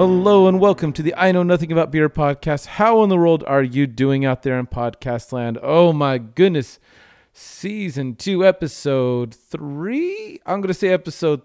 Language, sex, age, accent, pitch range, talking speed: English, male, 40-59, American, 125-165 Hz, 185 wpm